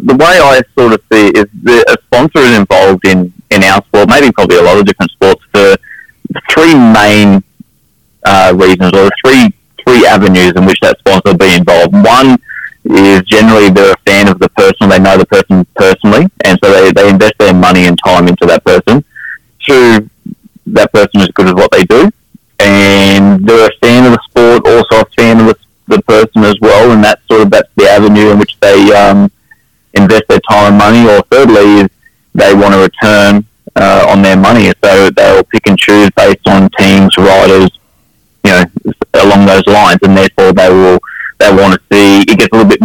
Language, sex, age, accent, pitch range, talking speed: English, male, 20-39, Australian, 95-105 Hz, 200 wpm